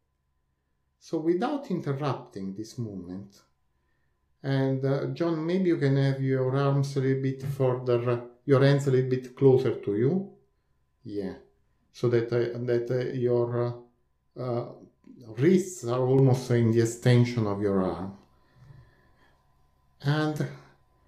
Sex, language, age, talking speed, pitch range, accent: male, English, 50-69, 130 wpm, 115-140 Hz, Italian